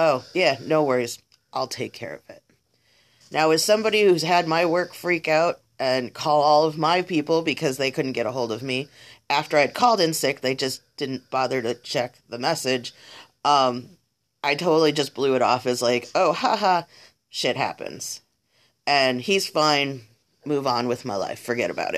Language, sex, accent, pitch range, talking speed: English, female, American, 125-165 Hz, 185 wpm